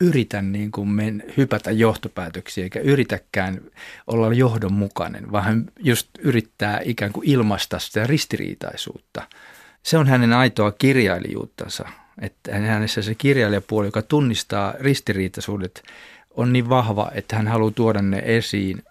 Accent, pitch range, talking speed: native, 105-130 Hz, 125 wpm